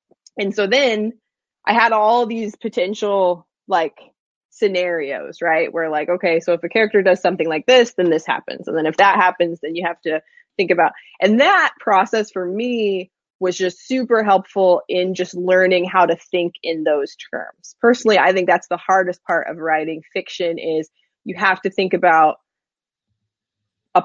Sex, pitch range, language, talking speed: female, 165-205 Hz, English, 175 wpm